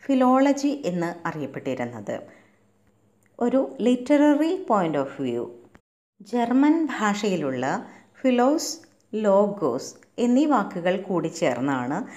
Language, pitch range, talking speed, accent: Malayalam, 165-250 Hz, 80 wpm, native